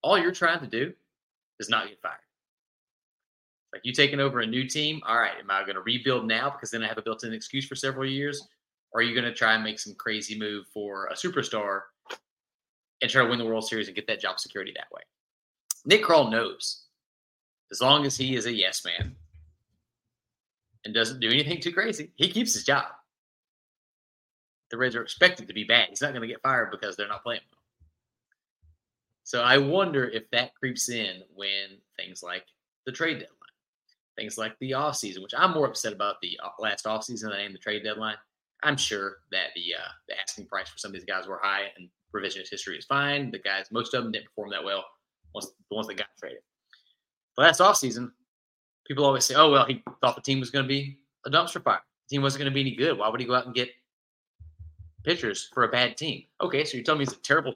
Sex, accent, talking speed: male, American, 225 wpm